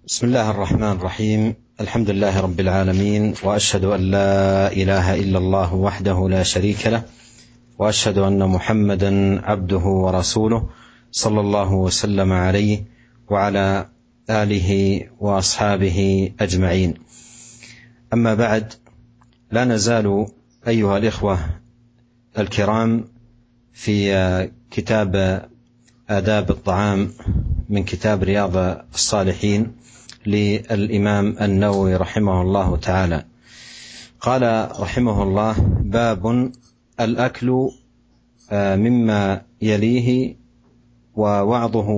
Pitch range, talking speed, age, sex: 95-115 Hz, 85 wpm, 40-59, male